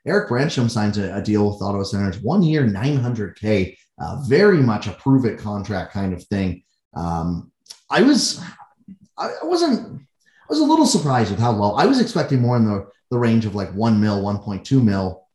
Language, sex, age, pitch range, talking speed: English, male, 30-49, 105-145 Hz, 205 wpm